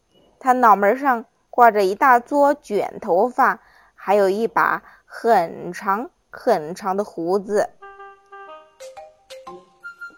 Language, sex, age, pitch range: Chinese, female, 20-39, 215-345 Hz